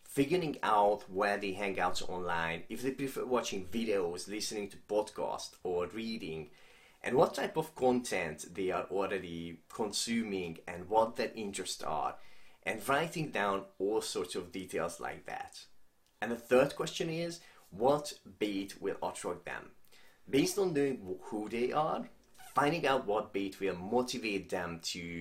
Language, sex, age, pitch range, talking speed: English, male, 30-49, 90-130 Hz, 150 wpm